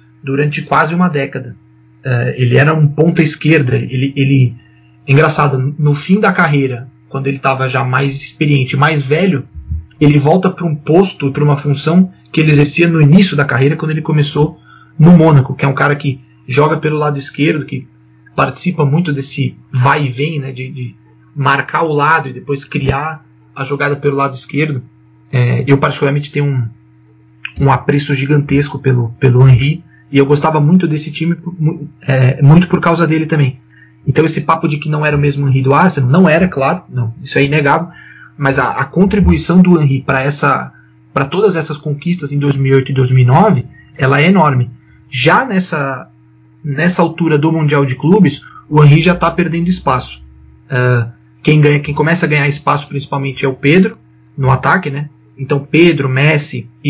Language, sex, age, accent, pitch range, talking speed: Portuguese, male, 30-49, Brazilian, 130-155 Hz, 175 wpm